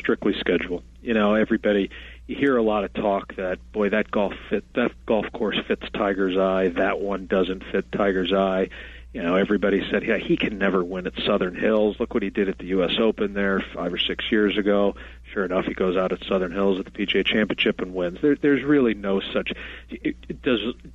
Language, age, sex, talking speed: English, 40-59, male, 215 wpm